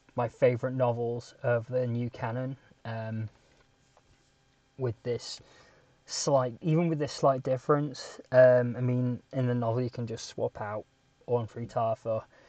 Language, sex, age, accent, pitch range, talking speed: English, male, 20-39, British, 125-145 Hz, 145 wpm